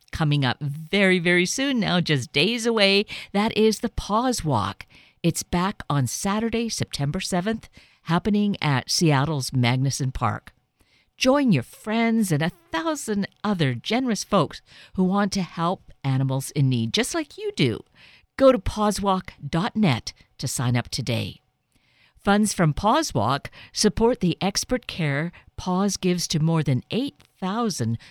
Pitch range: 140-210 Hz